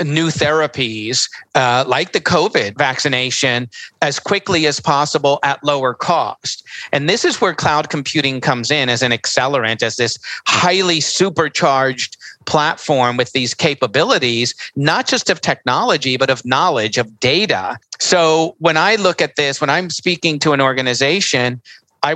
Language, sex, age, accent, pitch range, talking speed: English, male, 50-69, American, 125-160 Hz, 150 wpm